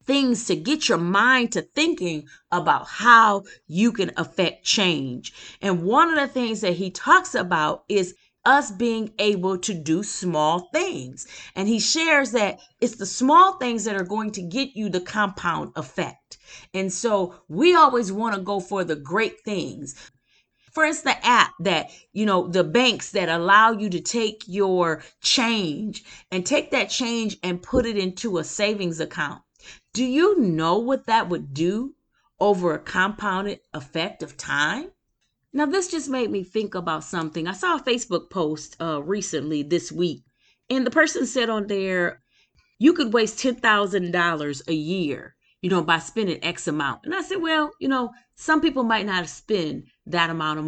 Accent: American